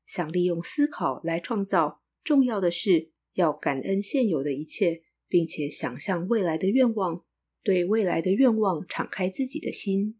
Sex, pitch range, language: female, 170-220 Hz, Chinese